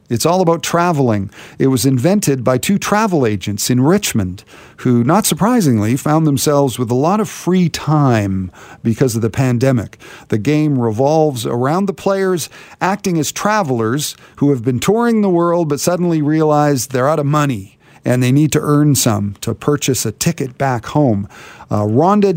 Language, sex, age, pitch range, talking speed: English, male, 50-69, 125-175 Hz, 170 wpm